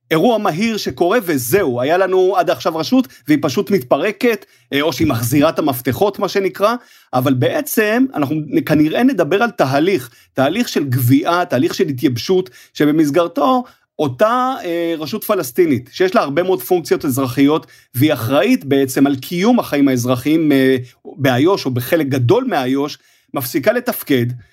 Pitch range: 135-195 Hz